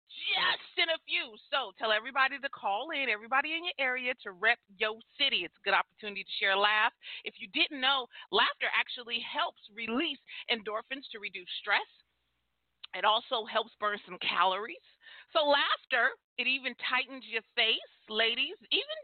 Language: English